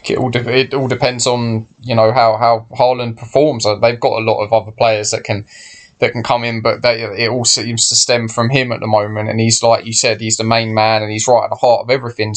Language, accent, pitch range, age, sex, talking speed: English, British, 110-130 Hz, 10-29, male, 270 wpm